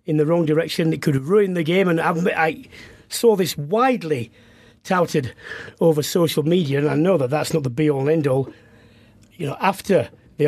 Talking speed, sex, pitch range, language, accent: 185 wpm, male, 130-200 Hz, English, British